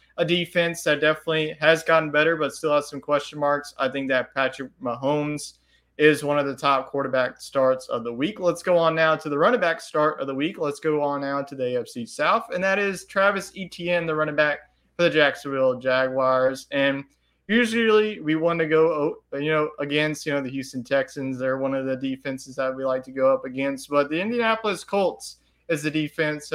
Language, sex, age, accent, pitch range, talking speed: English, male, 30-49, American, 135-160 Hz, 210 wpm